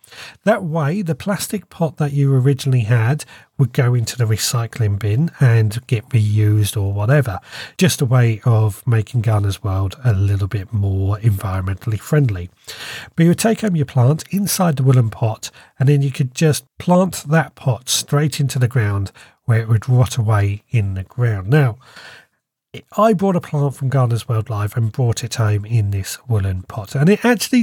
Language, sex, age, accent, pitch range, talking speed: English, male, 40-59, British, 110-150 Hz, 180 wpm